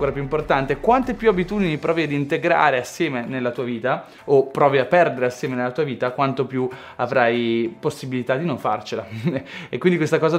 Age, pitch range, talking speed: 20-39, 140-195 Hz, 180 wpm